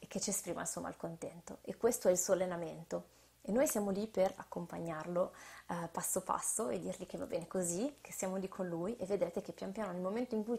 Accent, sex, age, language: native, female, 20-39, Italian